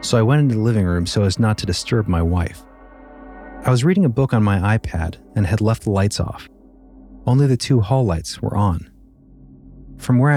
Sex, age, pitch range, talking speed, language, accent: male, 30-49, 95-145 Hz, 215 wpm, English, American